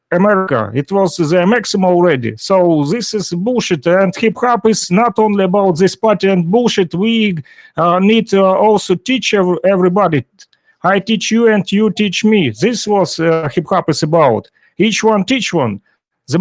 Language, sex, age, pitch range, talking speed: Russian, male, 40-59, 175-210 Hz, 170 wpm